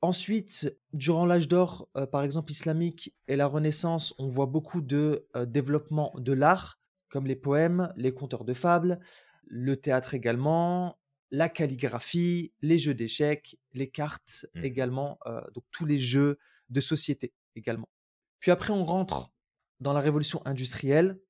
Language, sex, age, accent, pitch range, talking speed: French, male, 20-39, French, 135-175 Hz, 150 wpm